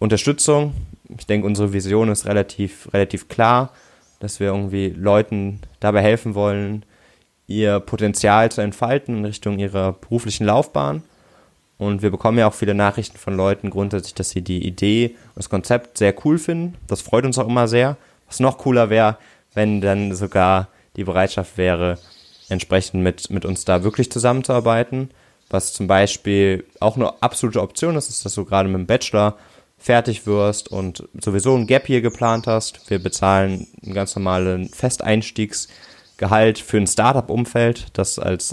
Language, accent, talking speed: German, German, 160 wpm